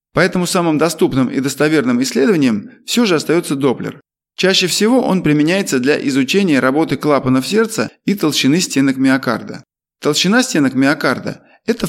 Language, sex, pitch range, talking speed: Russian, male, 140-230 Hz, 135 wpm